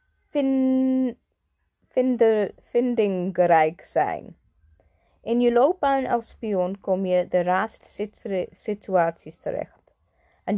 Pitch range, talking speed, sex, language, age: 175-240 Hz, 80 wpm, female, Dutch, 20-39